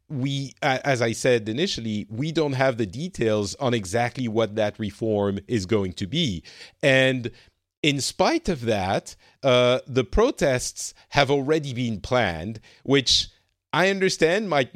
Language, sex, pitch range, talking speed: English, male, 105-135 Hz, 140 wpm